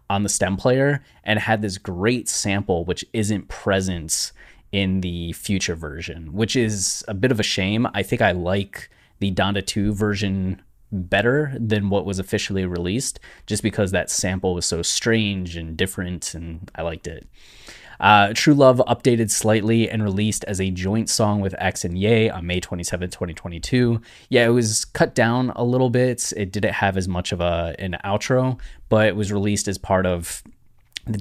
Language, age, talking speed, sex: English, 20-39, 180 wpm, male